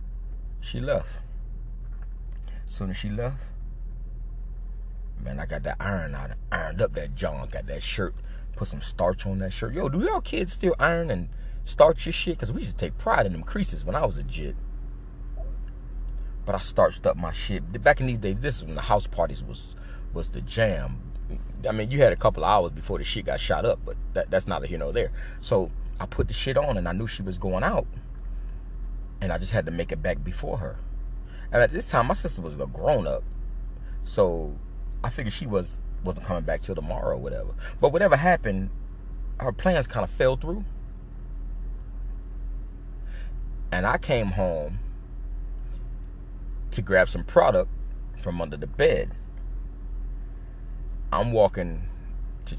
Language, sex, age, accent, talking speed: English, male, 30-49, American, 180 wpm